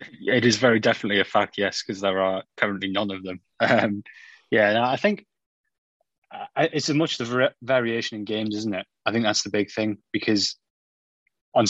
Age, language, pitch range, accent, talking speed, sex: 20-39, English, 95-105 Hz, British, 180 wpm, male